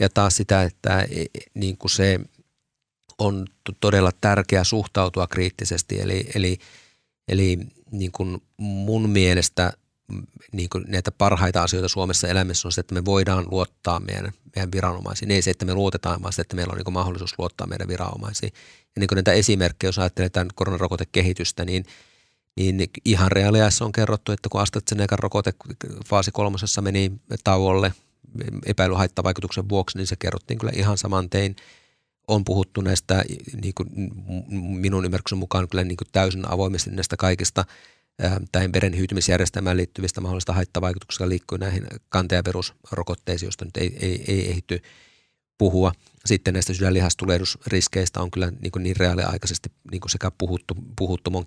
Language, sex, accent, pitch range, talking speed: Finnish, male, native, 90-100 Hz, 140 wpm